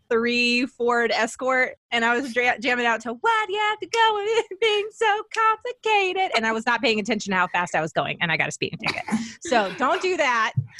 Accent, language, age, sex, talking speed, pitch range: American, English, 20-39, female, 235 wpm, 200-265 Hz